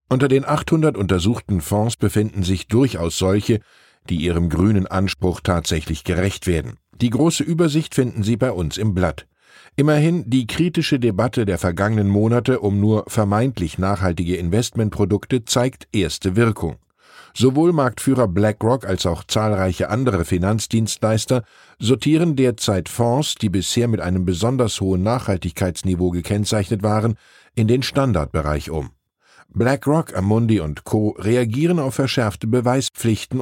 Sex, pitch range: male, 95-125 Hz